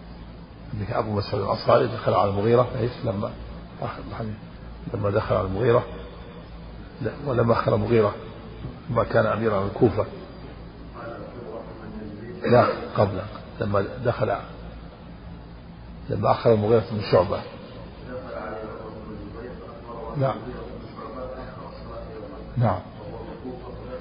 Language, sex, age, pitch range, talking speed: Arabic, male, 50-69, 105-125 Hz, 80 wpm